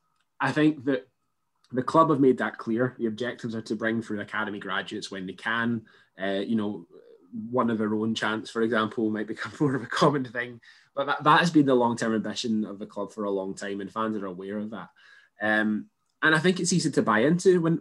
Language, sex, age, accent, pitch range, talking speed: English, male, 20-39, British, 105-130 Hz, 230 wpm